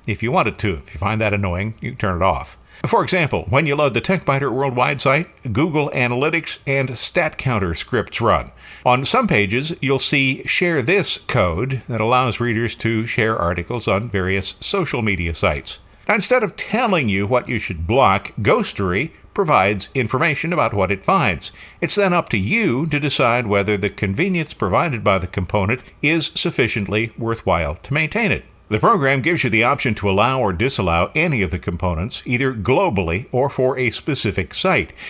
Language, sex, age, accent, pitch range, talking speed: English, male, 60-79, American, 100-140 Hz, 180 wpm